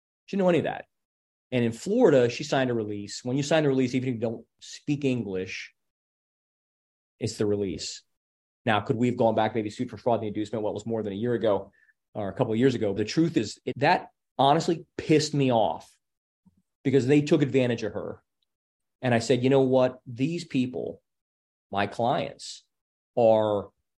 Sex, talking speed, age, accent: male, 200 wpm, 30-49, American